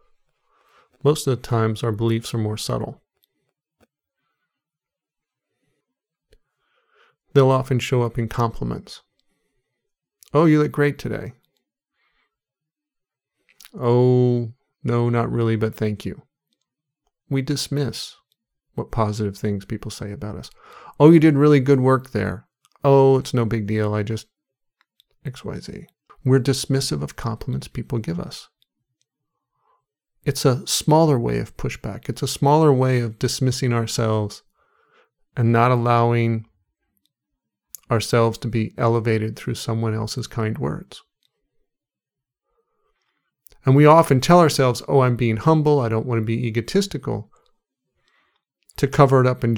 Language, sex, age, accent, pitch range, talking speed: English, male, 40-59, American, 115-145 Hz, 125 wpm